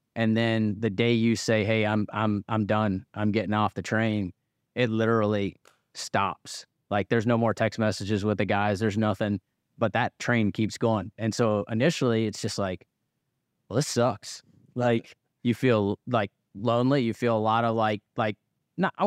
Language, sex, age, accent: English, male, 30-49, American